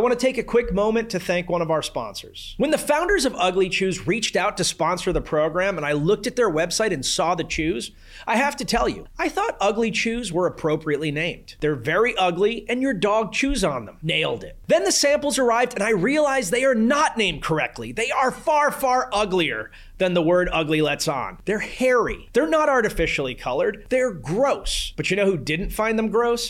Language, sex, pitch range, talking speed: English, male, 175-245 Hz, 220 wpm